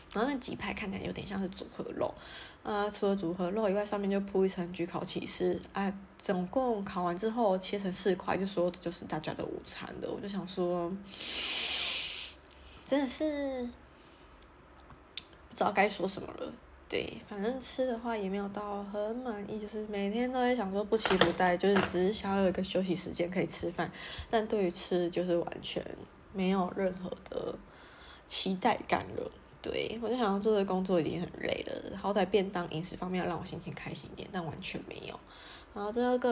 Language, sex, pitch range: Chinese, female, 180-220 Hz